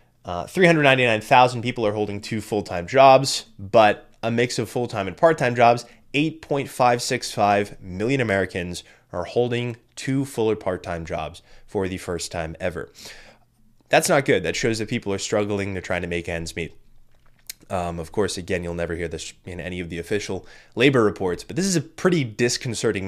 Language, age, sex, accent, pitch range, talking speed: English, 20-39, male, American, 95-120 Hz, 170 wpm